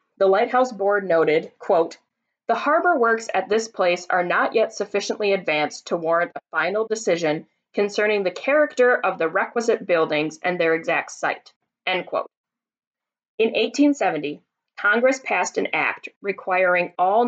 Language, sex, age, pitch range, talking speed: English, female, 30-49, 175-240 Hz, 145 wpm